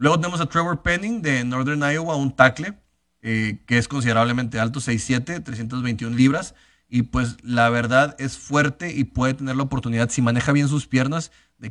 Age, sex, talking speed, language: 30-49, male, 180 wpm, Spanish